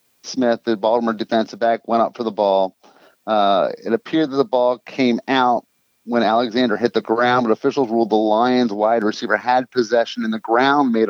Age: 30-49